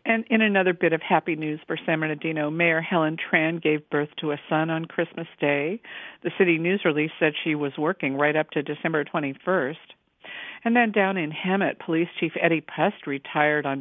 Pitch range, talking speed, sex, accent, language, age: 150-170 Hz, 195 wpm, female, American, English, 50-69